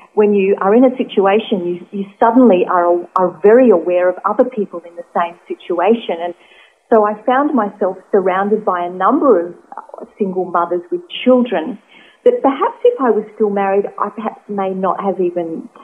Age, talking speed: 40-59, 180 wpm